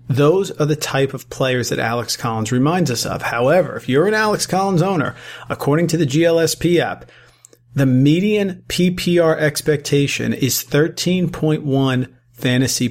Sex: male